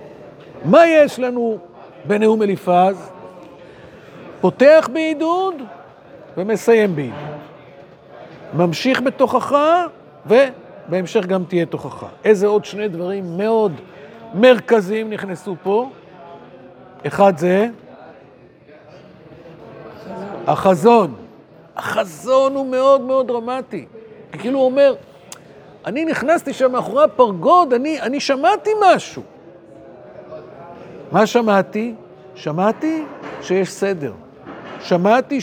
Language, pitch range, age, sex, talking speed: Hebrew, 180-260 Hz, 50-69, male, 85 wpm